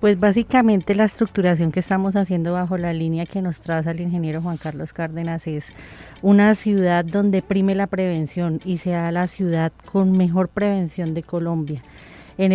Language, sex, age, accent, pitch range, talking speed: Spanish, female, 30-49, Colombian, 170-195 Hz, 165 wpm